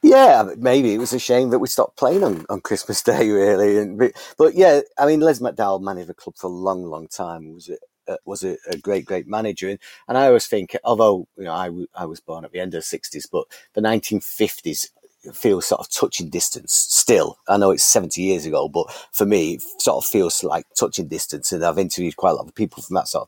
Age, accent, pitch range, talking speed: 40-59, British, 95-145 Hz, 235 wpm